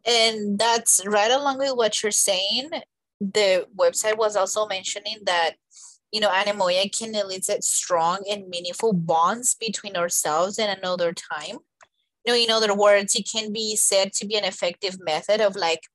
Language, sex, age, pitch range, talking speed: English, female, 20-39, 185-230 Hz, 165 wpm